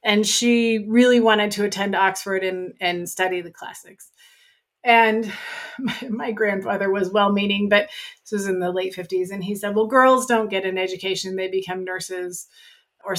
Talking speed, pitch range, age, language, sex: 175 wpm, 185-230 Hz, 30-49, English, female